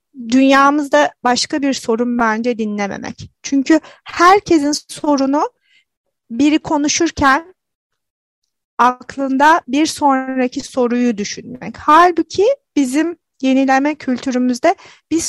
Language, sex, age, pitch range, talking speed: Turkish, female, 30-49, 240-310 Hz, 80 wpm